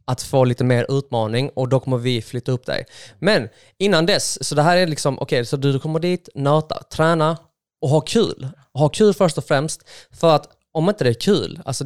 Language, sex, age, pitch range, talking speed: Swedish, male, 20-39, 125-155 Hz, 225 wpm